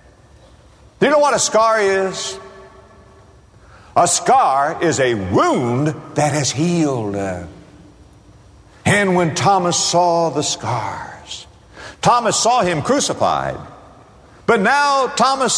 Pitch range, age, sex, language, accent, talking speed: 110-175 Hz, 60-79, male, English, American, 110 wpm